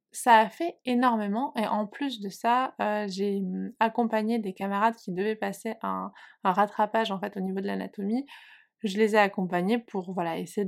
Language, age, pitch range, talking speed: French, 20-39, 190-230 Hz, 185 wpm